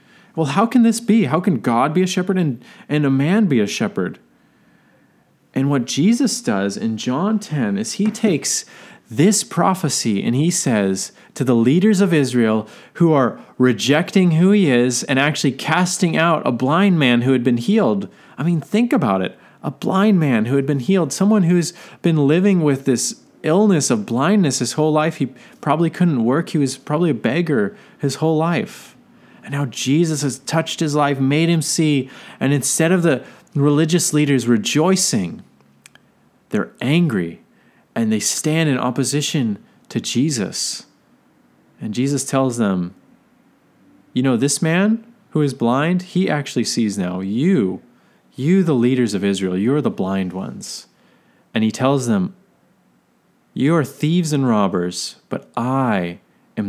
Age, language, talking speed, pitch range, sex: 30-49, English, 165 wpm, 130-185 Hz, male